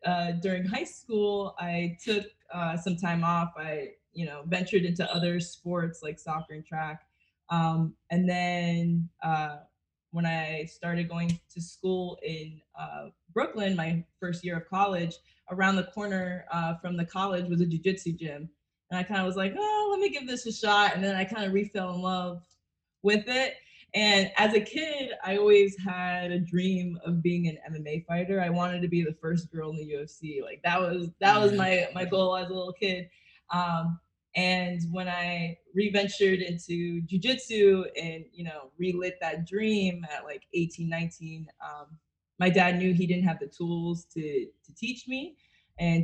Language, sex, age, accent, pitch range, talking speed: English, female, 20-39, American, 165-190 Hz, 180 wpm